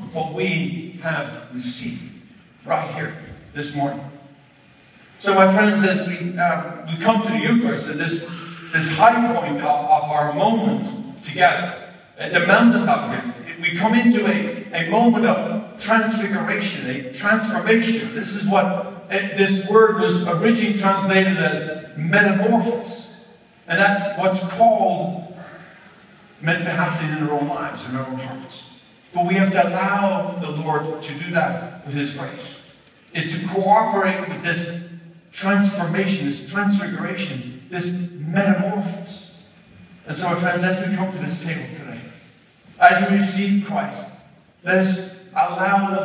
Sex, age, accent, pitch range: male, 50-69, American, 155-200 Hz